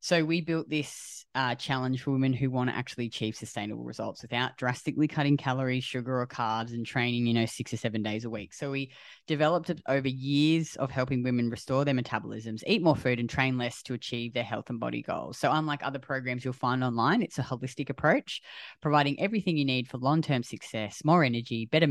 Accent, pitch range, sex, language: Australian, 120-145 Hz, female, English